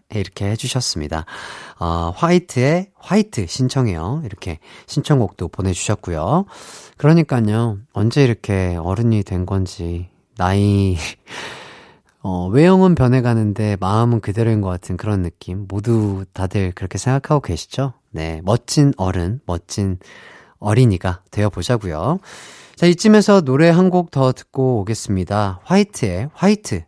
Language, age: Korean, 30-49